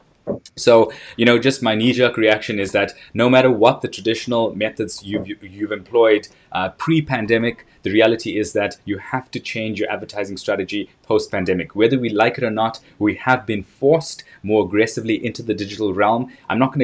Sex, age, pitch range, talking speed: male, 20-39, 100-115 Hz, 185 wpm